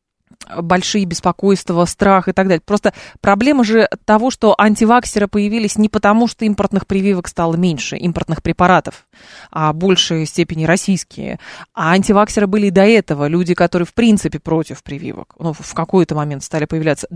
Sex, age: female, 20-39